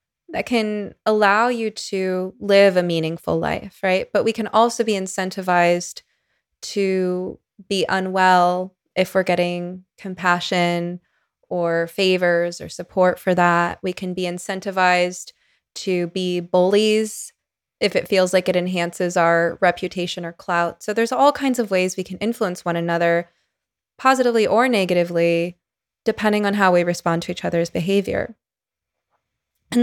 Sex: female